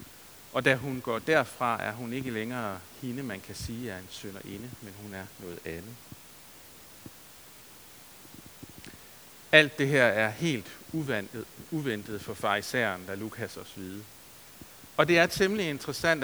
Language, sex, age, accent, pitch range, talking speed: Danish, male, 60-79, native, 115-155 Hz, 150 wpm